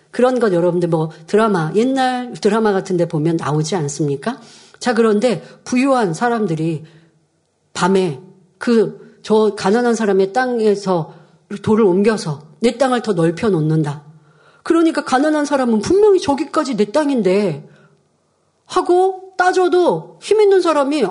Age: 40-59